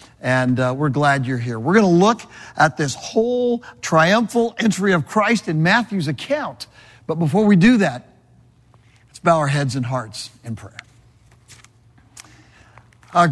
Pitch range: 125-180 Hz